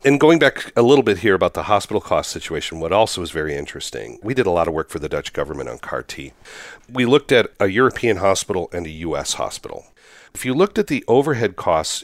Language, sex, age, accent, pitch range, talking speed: English, male, 40-59, American, 100-135 Hz, 230 wpm